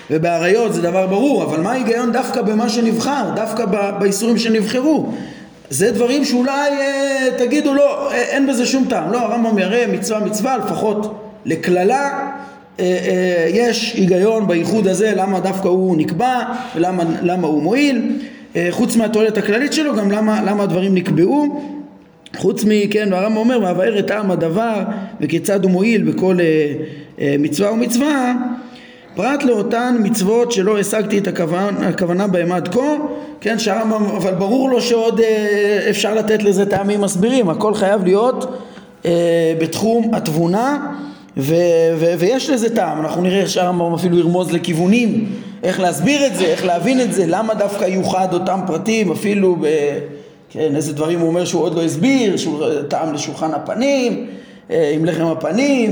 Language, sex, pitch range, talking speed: Hebrew, male, 175-240 Hz, 160 wpm